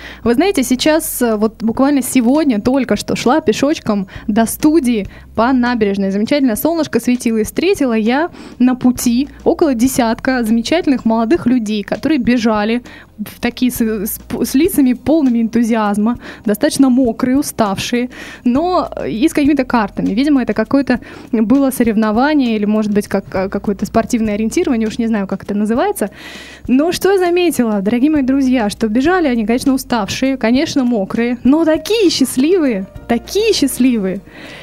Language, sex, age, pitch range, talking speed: Russian, female, 20-39, 225-280 Hz, 135 wpm